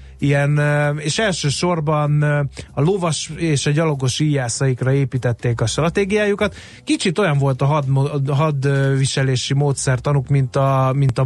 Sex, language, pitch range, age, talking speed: male, Hungarian, 130-160 Hz, 30-49, 110 wpm